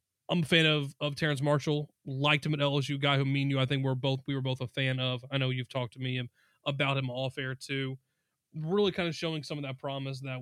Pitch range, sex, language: 135-160 Hz, male, English